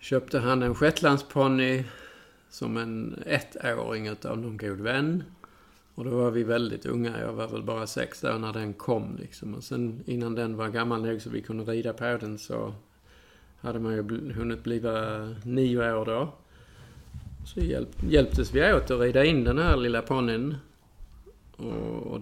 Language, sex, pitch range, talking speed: Swedish, male, 110-130 Hz, 160 wpm